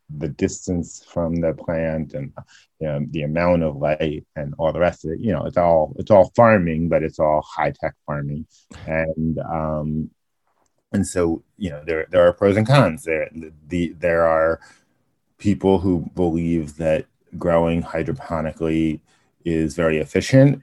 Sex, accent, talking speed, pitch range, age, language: male, American, 160 wpm, 75-85 Hz, 30-49, English